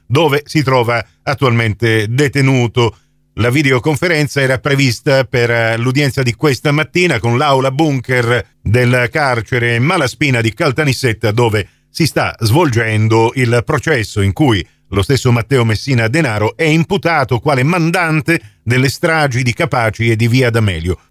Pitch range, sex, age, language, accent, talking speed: 110-135 Hz, male, 50-69, Italian, native, 135 wpm